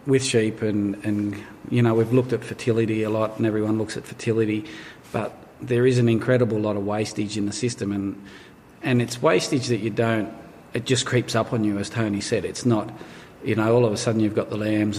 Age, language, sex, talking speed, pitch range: 40-59, English, male, 225 wpm, 105-115 Hz